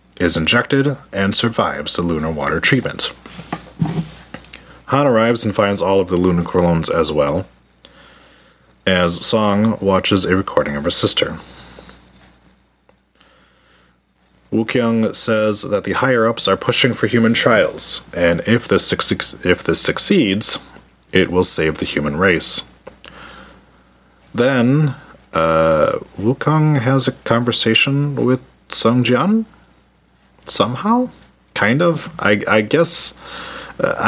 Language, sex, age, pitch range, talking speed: English, male, 30-49, 80-120 Hz, 120 wpm